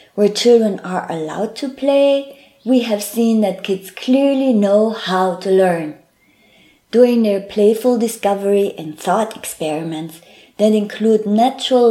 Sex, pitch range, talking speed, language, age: female, 185-230 Hz, 130 wpm, English, 20-39